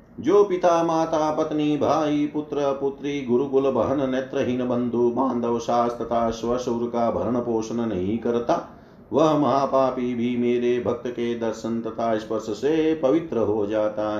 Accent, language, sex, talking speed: native, Hindi, male, 140 wpm